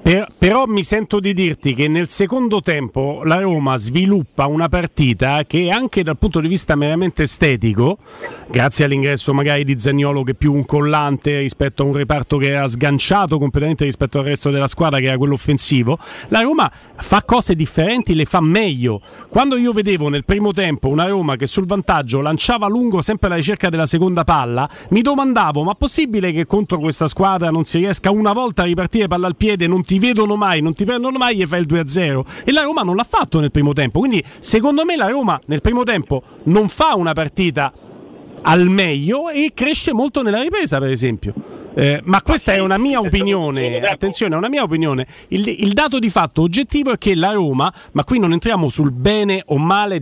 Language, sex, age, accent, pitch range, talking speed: Italian, male, 40-59, native, 145-220 Hz, 200 wpm